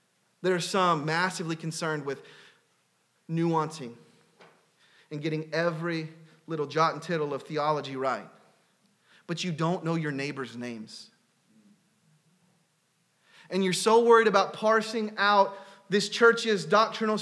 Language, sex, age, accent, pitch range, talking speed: English, male, 30-49, American, 180-245 Hz, 120 wpm